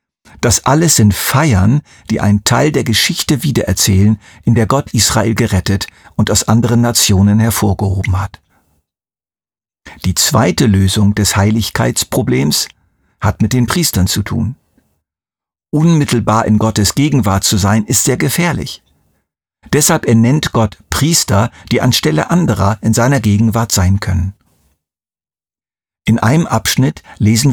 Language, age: German, 50-69